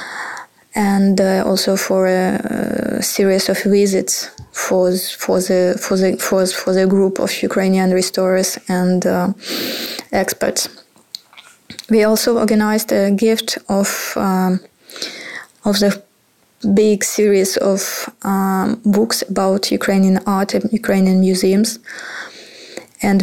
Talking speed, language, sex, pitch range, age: 115 wpm, Ukrainian, female, 190-215 Hz, 20-39